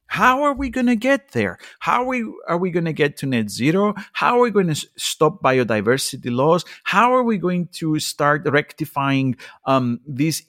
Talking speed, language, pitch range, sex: 195 wpm, English, 135-195 Hz, male